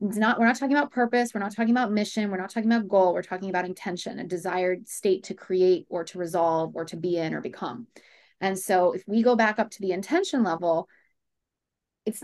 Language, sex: English, female